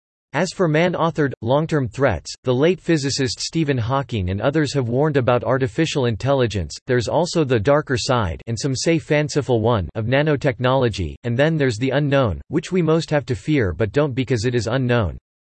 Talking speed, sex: 175 wpm, male